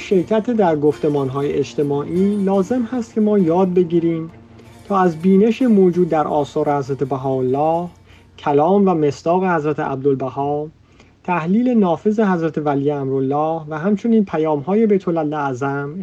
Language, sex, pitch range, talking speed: Persian, male, 140-195 Hz, 125 wpm